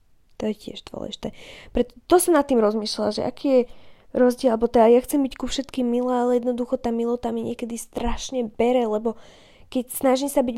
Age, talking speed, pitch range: 20-39, 180 wpm, 200-245 Hz